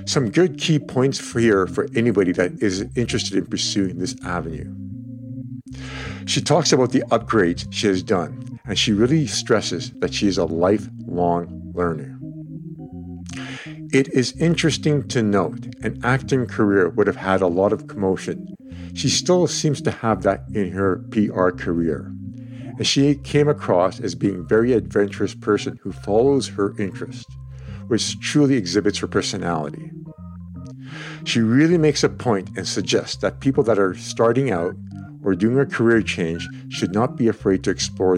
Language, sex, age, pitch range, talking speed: English, male, 50-69, 95-130 Hz, 160 wpm